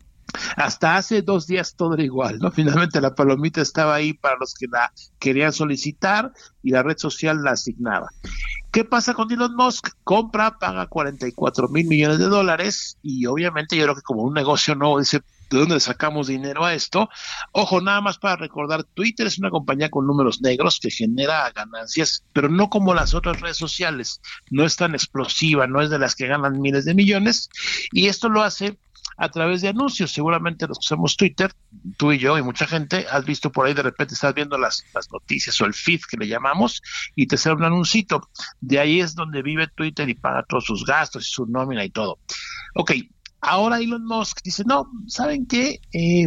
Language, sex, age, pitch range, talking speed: Spanish, male, 60-79, 145-195 Hz, 200 wpm